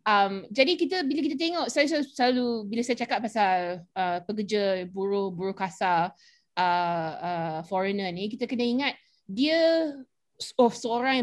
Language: Malay